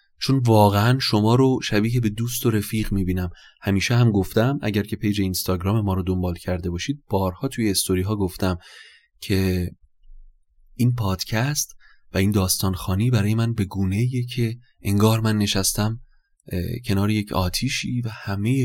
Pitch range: 95-110 Hz